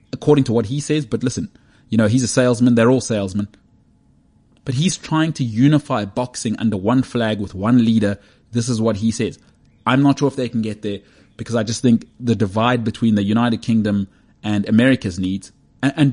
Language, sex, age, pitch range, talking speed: English, male, 30-49, 105-130 Hz, 200 wpm